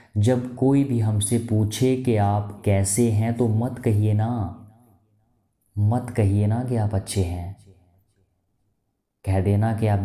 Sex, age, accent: male, 20-39, native